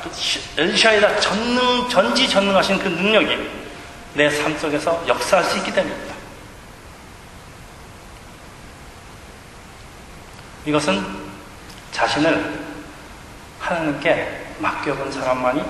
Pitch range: 100-150 Hz